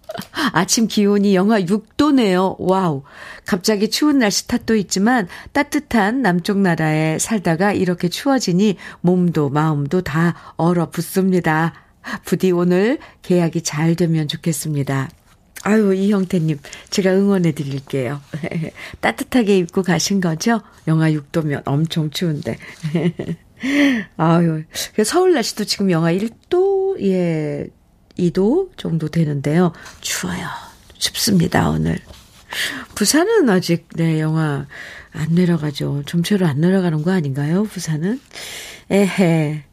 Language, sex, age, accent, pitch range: Korean, female, 50-69, native, 165-230 Hz